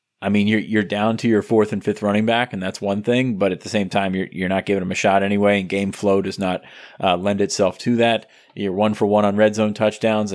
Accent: American